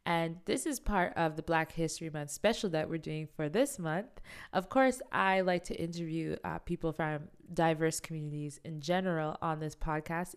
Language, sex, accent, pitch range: English, female, American, 155-190 Hz